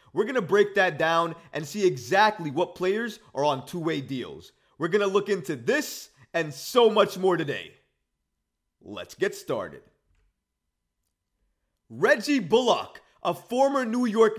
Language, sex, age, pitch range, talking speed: English, male, 30-49, 150-205 Hz, 145 wpm